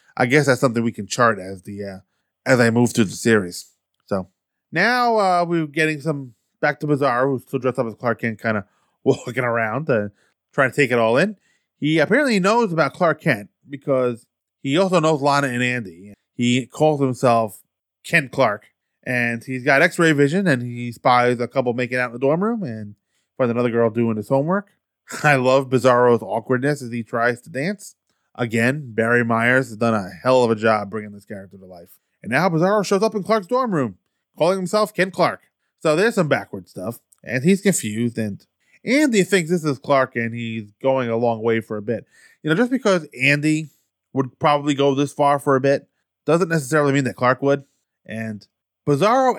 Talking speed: 200 wpm